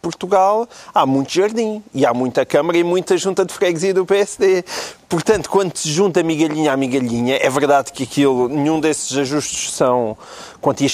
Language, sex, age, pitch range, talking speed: Portuguese, male, 30-49, 140-185 Hz, 170 wpm